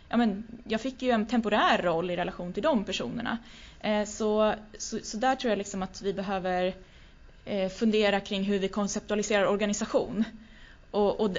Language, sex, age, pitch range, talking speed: Swedish, female, 20-39, 190-220 Hz, 150 wpm